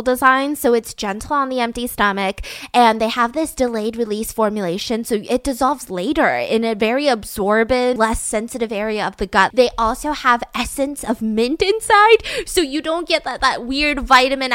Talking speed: 180 wpm